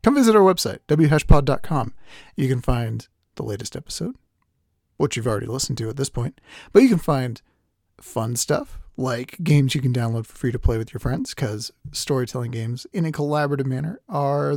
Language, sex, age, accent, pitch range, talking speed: English, male, 40-59, American, 115-150 Hz, 185 wpm